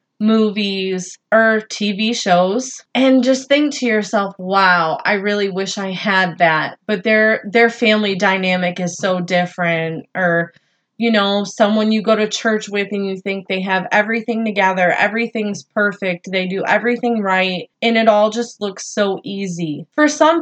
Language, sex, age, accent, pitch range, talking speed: English, female, 20-39, American, 185-225 Hz, 160 wpm